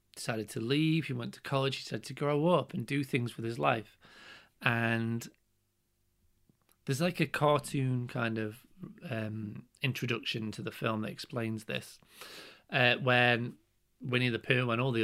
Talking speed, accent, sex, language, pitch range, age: 165 wpm, British, male, English, 110-135 Hz, 30-49